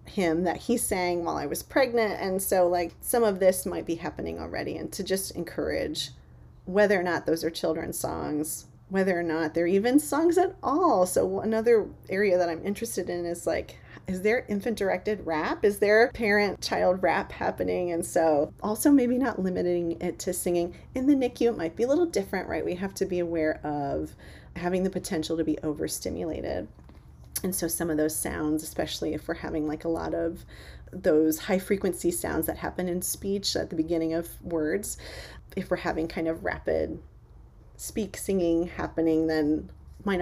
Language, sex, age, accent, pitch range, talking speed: English, female, 30-49, American, 160-205 Hz, 190 wpm